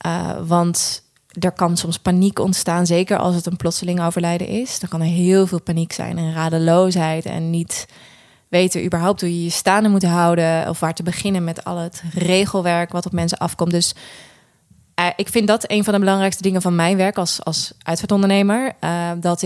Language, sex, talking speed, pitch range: Dutch, female, 195 wpm, 170-195 Hz